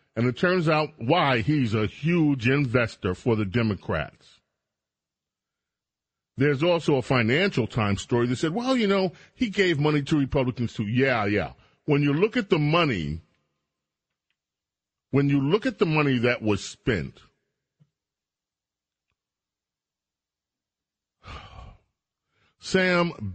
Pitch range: 120-160 Hz